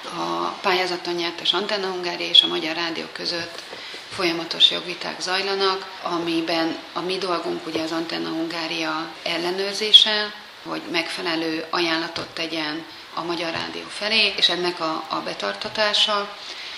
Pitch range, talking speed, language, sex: 170-195 Hz, 125 wpm, Hungarian, female